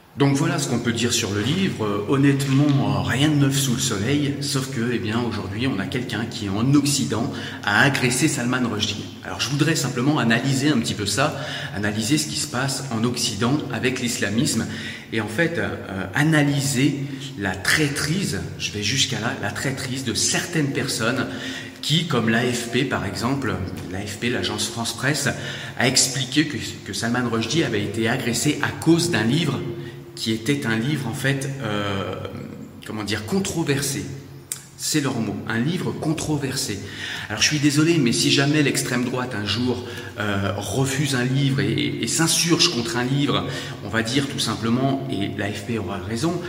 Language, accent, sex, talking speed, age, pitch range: French, French, male, 175 wpm, 30-49, 115-140 Hz